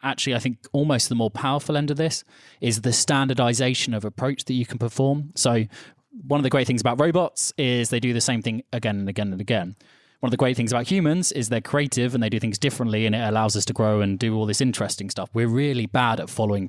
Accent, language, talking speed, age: British, English, 250 wpm, 20-39